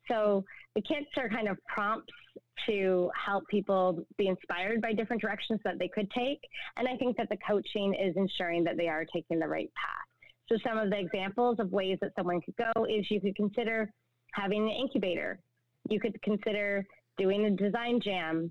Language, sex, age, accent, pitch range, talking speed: English, female, 20-39, American, 185-220 Hz, 190 wpm